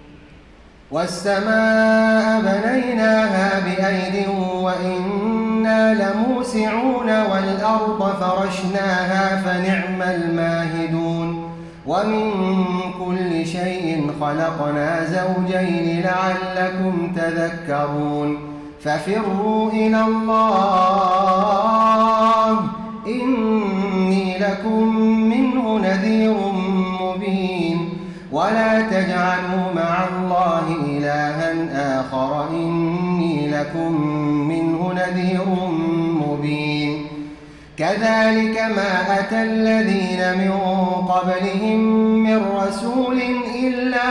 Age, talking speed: 30-49, 60 wpm